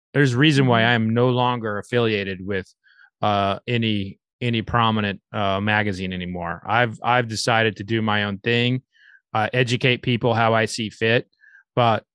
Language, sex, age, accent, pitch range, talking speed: English, male, 30-49, American, 110-130 Hz, 165 wpm